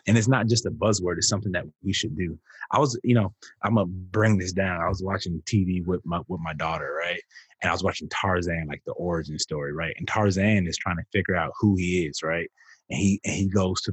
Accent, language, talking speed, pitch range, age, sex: American, English, 250 wpm, 90-110 Hz, 20-39, male